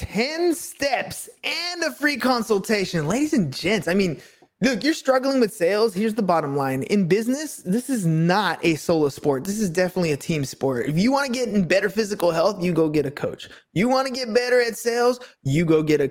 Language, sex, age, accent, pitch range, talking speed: English, male, 20-39, American, 180-255 Hz, 220 wpm